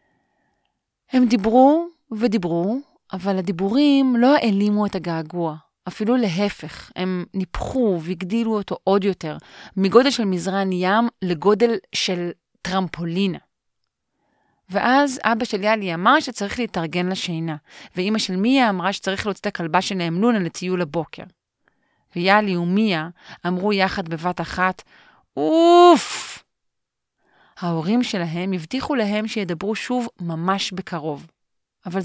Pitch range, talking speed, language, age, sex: 175-225 Hz, 110 wpm, Hebrew, 30-49, female